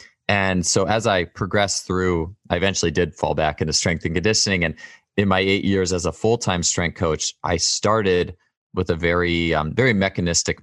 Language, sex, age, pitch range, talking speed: English, male, 20-39, 85-100 Hz, 185 wpm